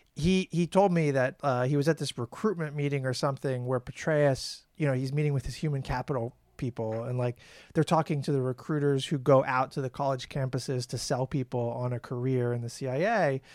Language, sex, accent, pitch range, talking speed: English, male, American, 130-170 Hz, 215 wpm